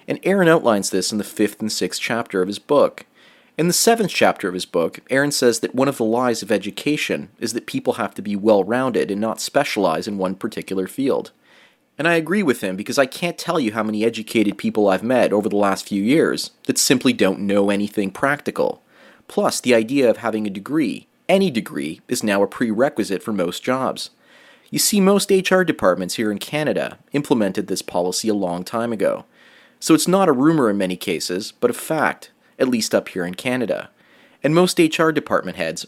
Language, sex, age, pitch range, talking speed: English, male, 30-49, 100-145 Hz, 205 wpm